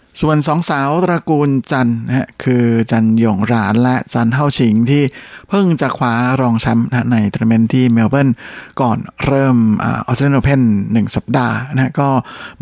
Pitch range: 115-135 Hz